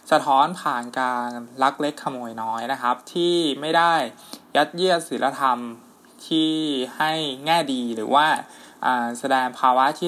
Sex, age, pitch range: male, 20-39, 125-160 Hz